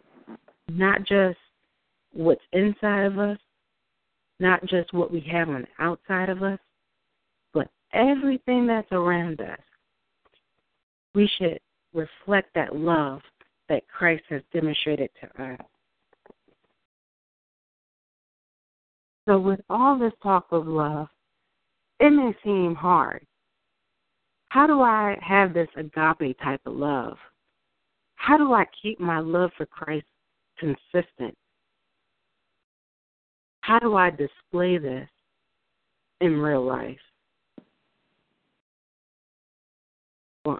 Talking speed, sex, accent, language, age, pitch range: 105 wpm, female, American, English, 40-59, 155-200 Hz